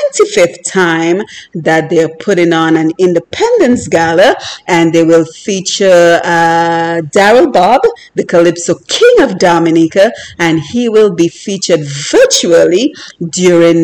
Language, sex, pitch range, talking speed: English, female, 170-255 Hz, 120 wpm